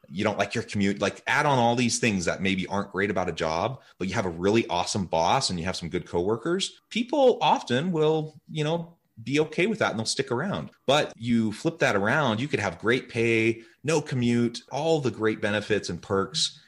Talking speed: 225 wpm